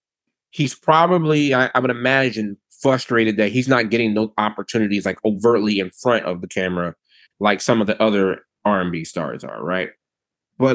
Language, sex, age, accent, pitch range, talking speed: English, male, 20-39, American, 105-125 Hz, 165 wpm